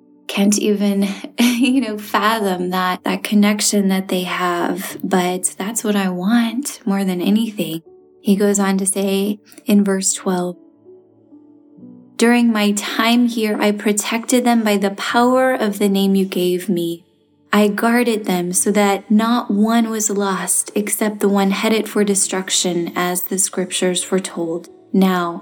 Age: 20-39